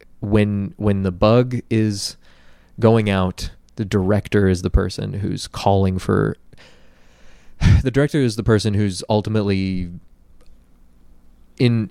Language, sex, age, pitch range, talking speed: English, male, 20-39, 95-115 Hz, 115 wpm